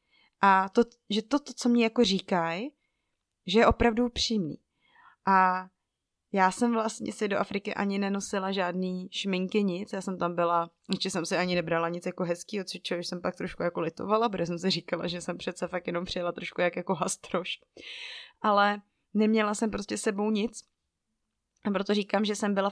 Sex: female